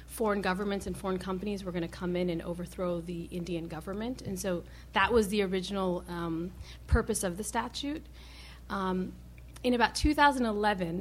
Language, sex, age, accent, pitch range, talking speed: English, female, 40-59, American, 180-220 Hz, 165 wpm